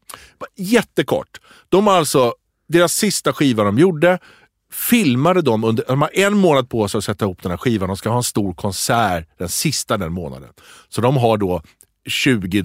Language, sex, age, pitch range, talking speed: English, male, 50-69, 110-150 Hz, 180 wpm